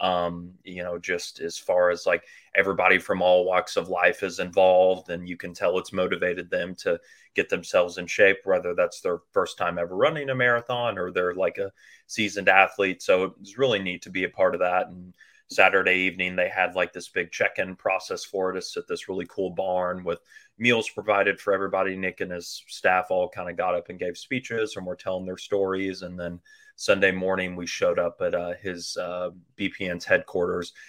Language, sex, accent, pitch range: English, male, American, 90-110 Hz